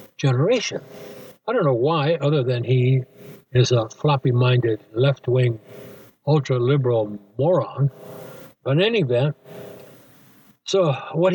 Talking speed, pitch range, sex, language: 105 wpm, 130-175 Hz, male, English